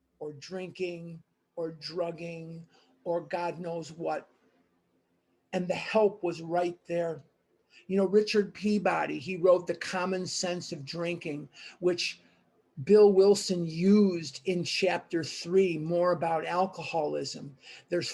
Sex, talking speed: male, 120 wpm